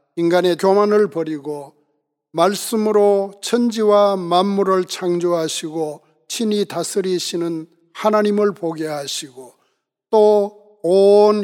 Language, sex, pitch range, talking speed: English, male, 165-200 Hz, 70 wpm